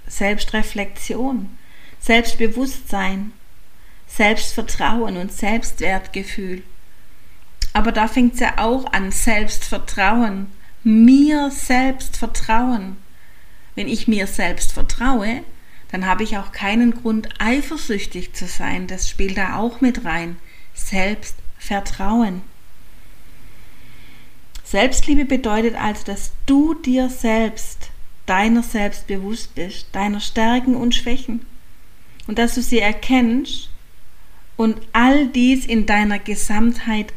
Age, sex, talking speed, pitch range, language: 40-59, female, 100 wpm, 195-240 Hz, German